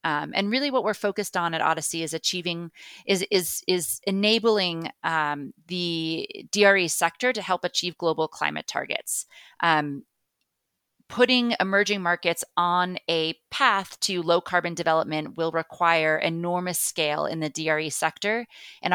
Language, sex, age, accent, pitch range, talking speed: English, female, 30-49, American, 160-190 Hz, 145 wpm